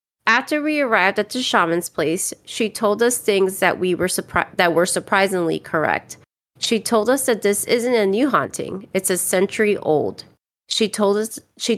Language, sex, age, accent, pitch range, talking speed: English, female, 30-49, American, 175-220 Hz, 185 wpm